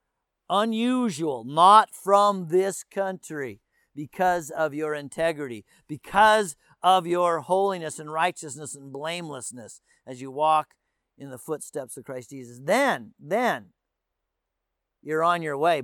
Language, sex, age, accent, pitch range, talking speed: English, male, 50-69, American, 140-195 Hz, 120 wpm